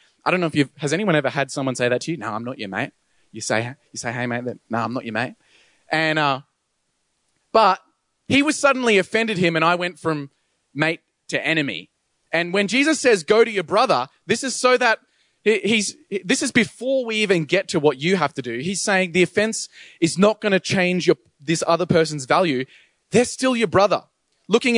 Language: English